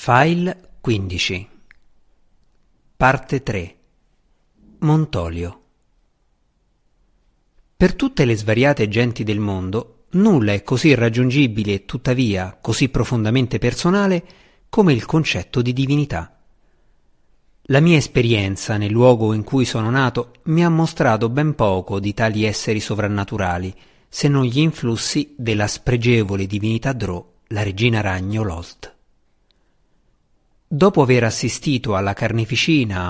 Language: Italian